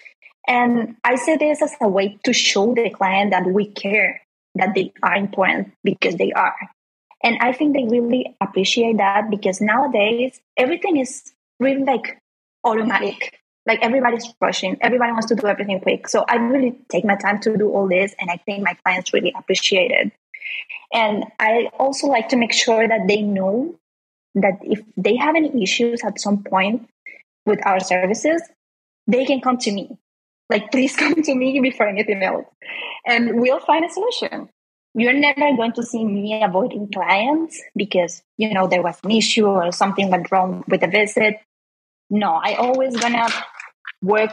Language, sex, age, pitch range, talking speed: English, female, 20-39, 200-255 Hz, 175 wpm